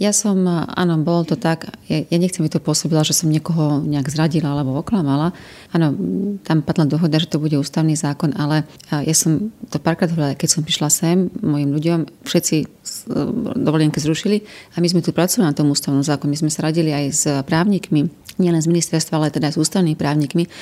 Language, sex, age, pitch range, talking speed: Slovak, female, 30-49, 150-170 Hz, 200 wpm